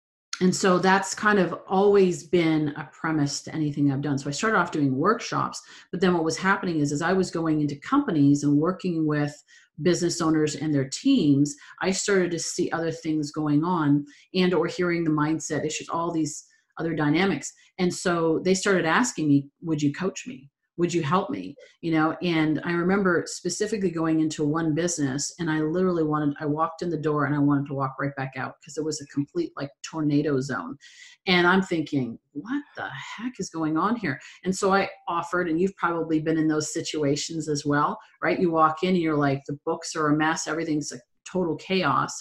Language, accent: English, American